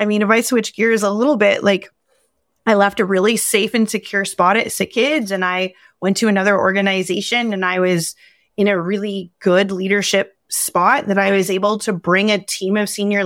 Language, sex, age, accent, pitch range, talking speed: English, female, 20-39, American, 190-240 Hz, 205 wpm